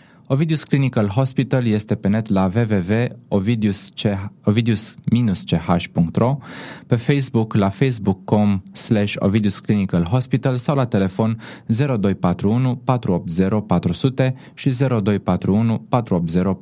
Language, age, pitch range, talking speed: Romanian, 20-39, 95-120 Hz, 85 wpm